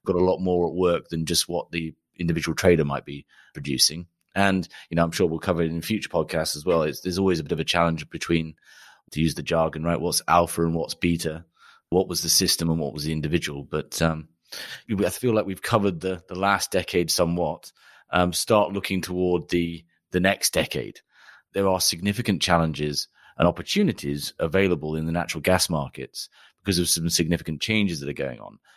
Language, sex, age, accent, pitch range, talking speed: English, male, 30-49, British, 80-95 Hz, 200 wpm